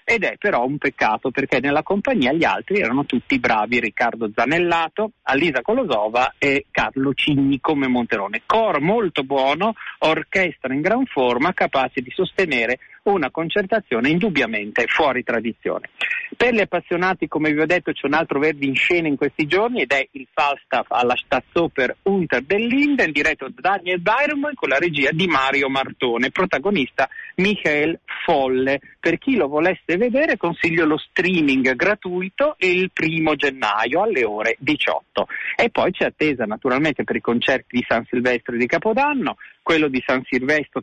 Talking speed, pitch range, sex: 155 wpm, 135-195 Hz, male